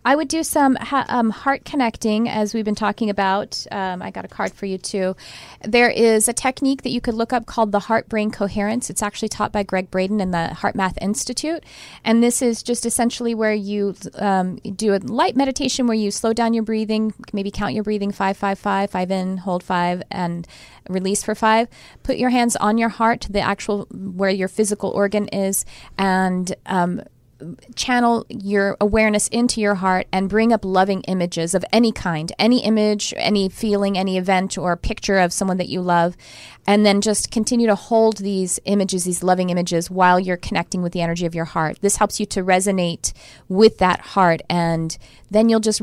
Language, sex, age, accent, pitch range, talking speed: English, female, 30-49, American, 185-225 Hz, 200 wpm